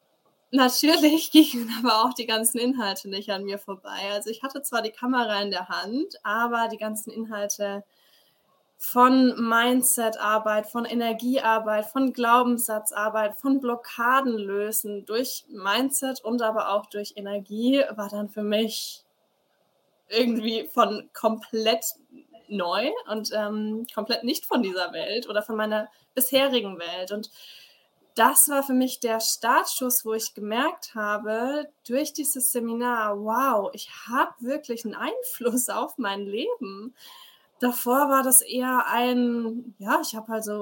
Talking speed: 135 wpm